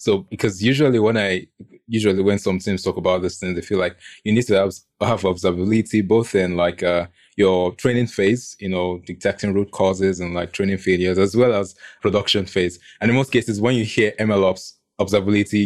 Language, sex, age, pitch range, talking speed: English, male, 20-39, 95-110 Hz, 200 wpm